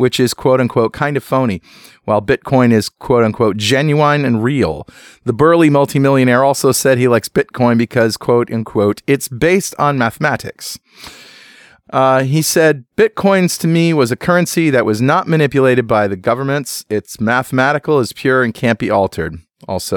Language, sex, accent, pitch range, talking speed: English, male, American, 110-145 Hz, 165 wpm